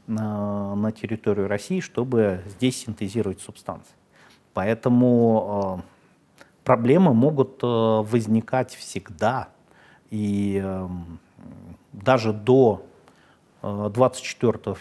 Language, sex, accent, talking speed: Russian, male, native, 65 wpm